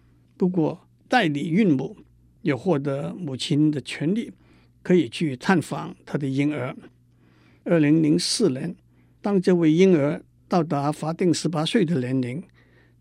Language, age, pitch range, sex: Chinese, 60-79, 140-180 Hz, male